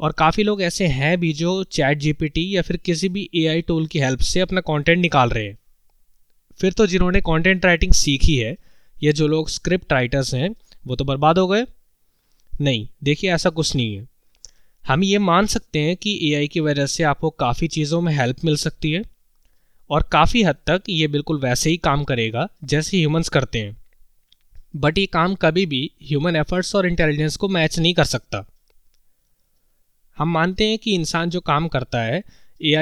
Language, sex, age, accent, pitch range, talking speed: Hindi, male, 20-39, native, 140-180 Hz, 190 wpm